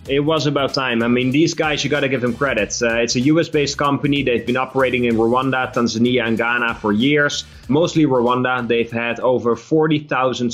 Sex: male